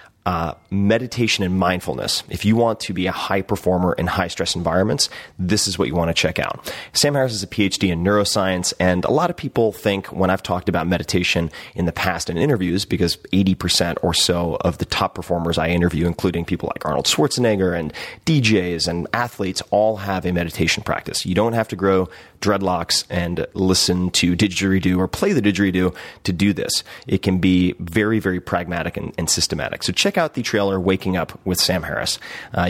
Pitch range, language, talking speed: 90-105 Hz, English, 200 wpm